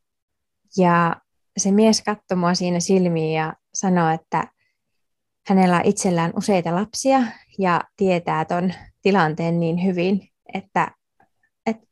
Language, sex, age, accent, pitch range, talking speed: Finnish, female, 20-39, native, 170-200 Hz, 120 wpm